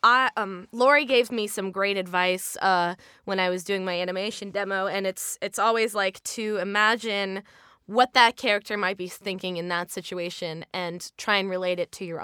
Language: English